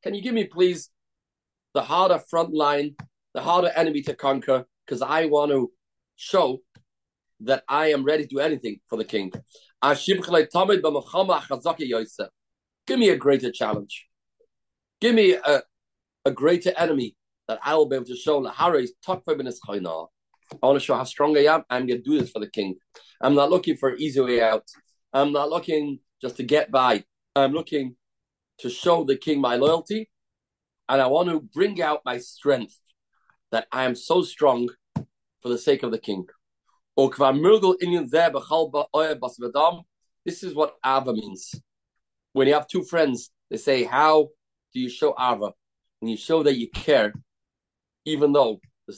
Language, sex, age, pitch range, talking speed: English, male, 40-59, 130-170 Hz, 160 wpm